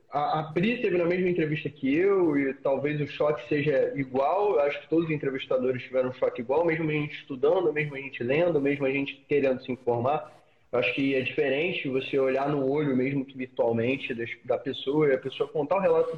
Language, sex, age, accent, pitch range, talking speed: Portuguese, male, 20-39, Brazilian, 135-180 Hz, 215 wpm